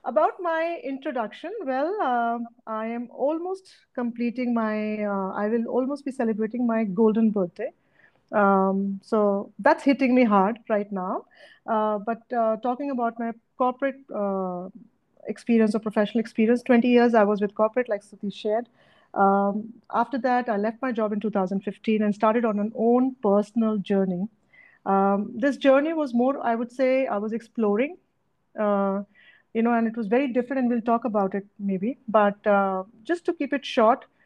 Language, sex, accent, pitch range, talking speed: English, female, Indian, 200-245 Hz, 170 wpm